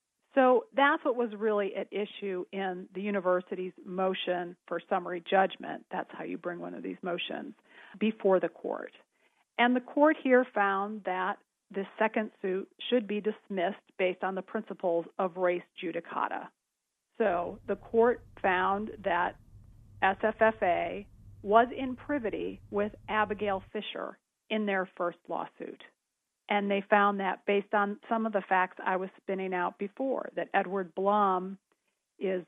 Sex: female